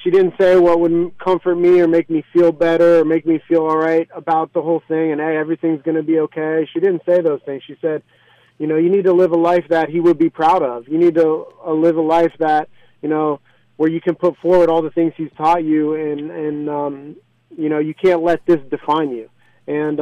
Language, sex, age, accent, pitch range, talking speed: English, male, 30-49, American, 155-180 Hz, 250 wpm